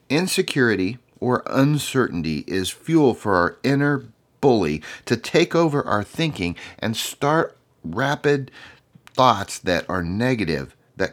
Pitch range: 95-135 Hz